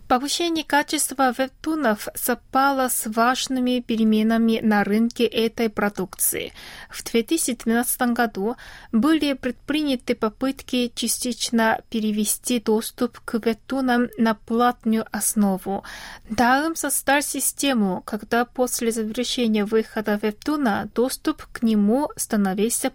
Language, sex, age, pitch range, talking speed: Russian, female, 20-39, 215-255 Hz, 95 wpm